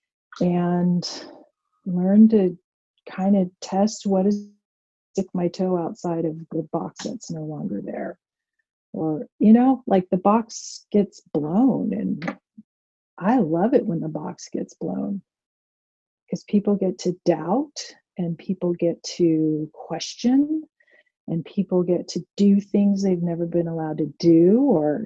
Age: 40-59